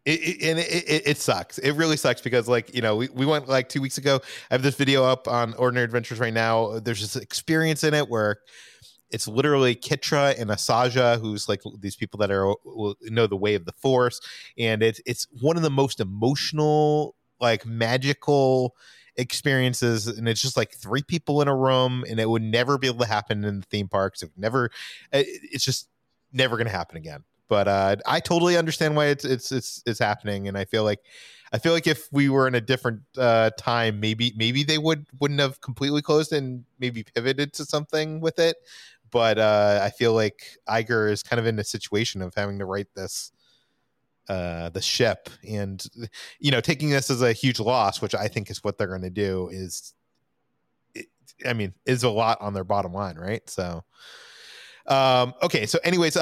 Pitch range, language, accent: 110-140 Hz, English, American